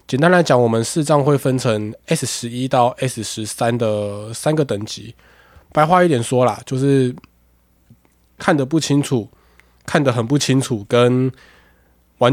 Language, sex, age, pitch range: Chinese, male, 20-39, 110-135 Hz